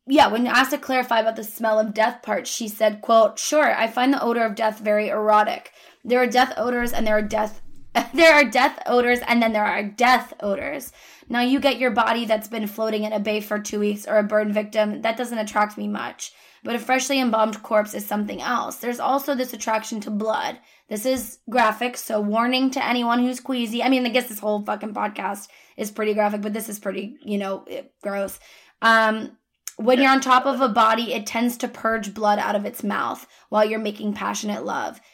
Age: 20-39